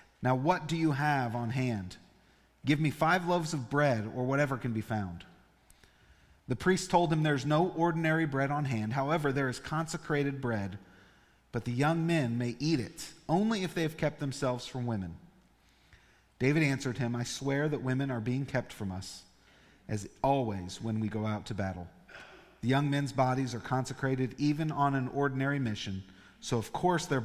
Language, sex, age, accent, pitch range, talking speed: English, male, 40-59, American, 105-145 Hz, 185 wpm